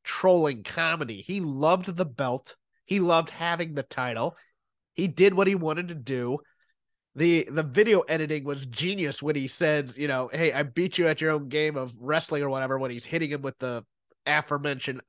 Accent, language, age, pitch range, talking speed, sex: American, English, 30-49, 140-185 Hz, 190 wpm, male